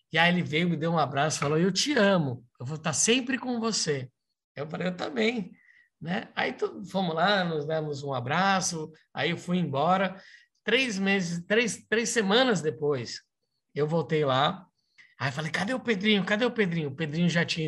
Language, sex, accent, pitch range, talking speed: Portuguese, male, Brazilian, 135-190 Hz, 180 wpm